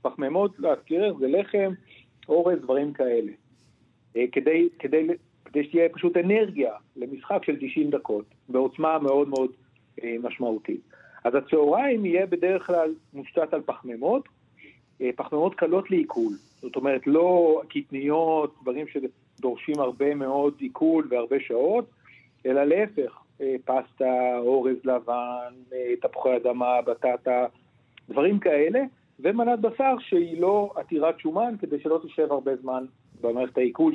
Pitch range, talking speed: 130-185 Hz, 115 wpm